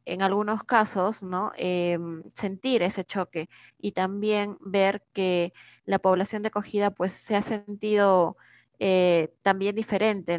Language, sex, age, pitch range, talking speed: Spanish, female, 20-39, 180-205 Hz, 135 wpm